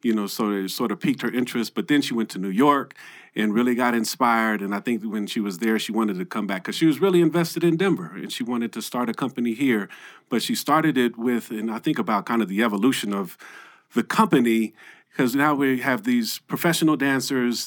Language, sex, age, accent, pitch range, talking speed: English, male, 50-69, American, 110-140 Hz, 240 wpm